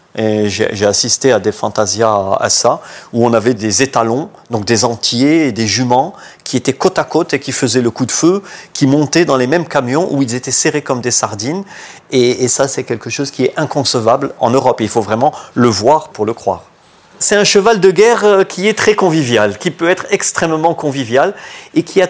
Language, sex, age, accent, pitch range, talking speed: French, male, 40-59, French, 115-155 Hz, 215 wpm